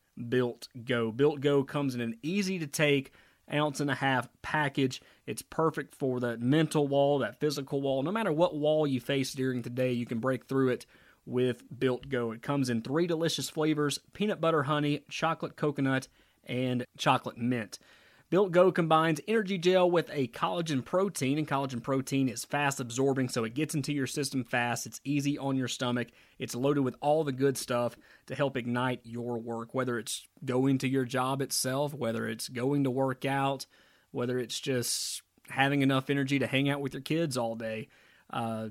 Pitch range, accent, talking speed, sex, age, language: 125-150 Hz, American, 190 wpm, male, 30-49, English